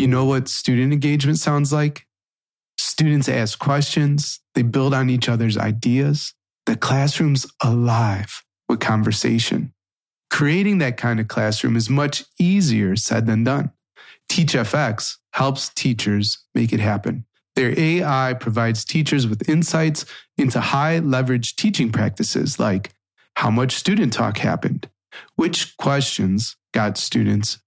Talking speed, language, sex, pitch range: 130 wpm, English, male, 115-150 Hz